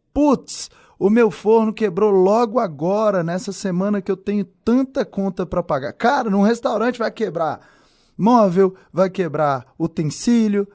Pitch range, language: 155-220 Hz, Portuguese